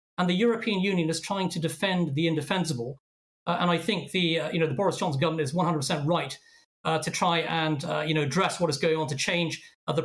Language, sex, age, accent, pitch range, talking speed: English, male, 40-59, British, 160-195 Hz, 255 wpm